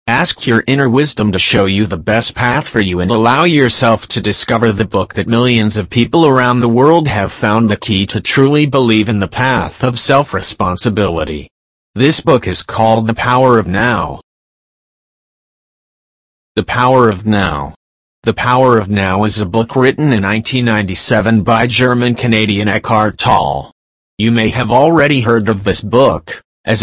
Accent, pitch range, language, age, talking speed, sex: American, 100-125 Hz, English, 30-49, 165 wpm, male